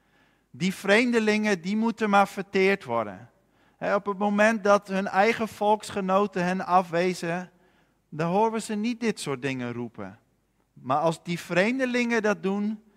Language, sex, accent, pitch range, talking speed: Dutch, male, Dutch, 150-215 Hz, 145 wpm